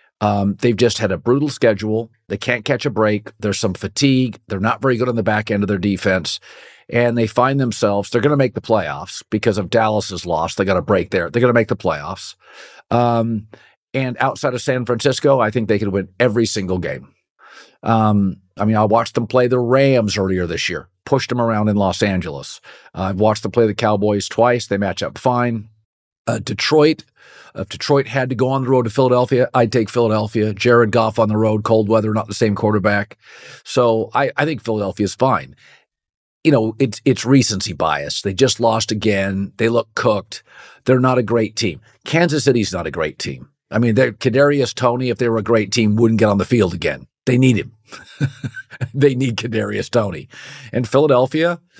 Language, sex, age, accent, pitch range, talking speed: English, male, 50-69, American, 105-125 Hz, 205 wpm